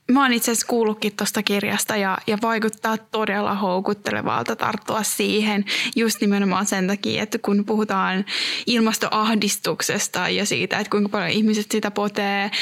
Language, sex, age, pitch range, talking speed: Finnish, female, 20-39, 205-235 Hz, 145 wpm